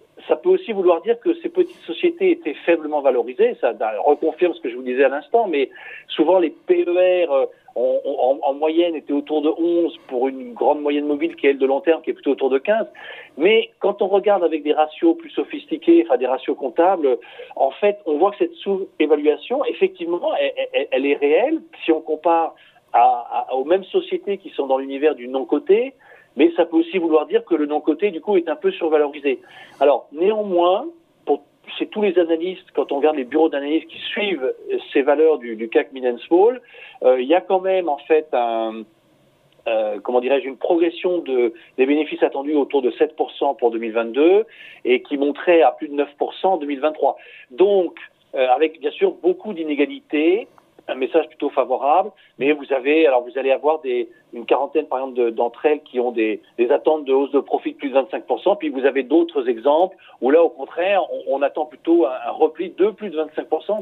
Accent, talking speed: French, 205 wpm